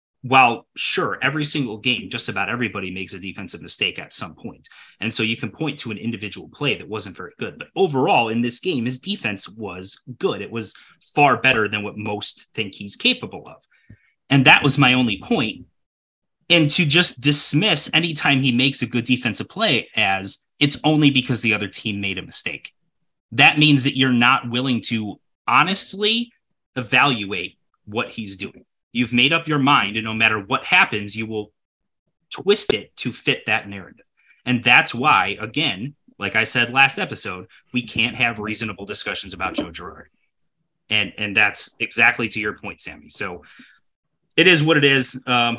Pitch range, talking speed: 105-140 Hz, 180 wpm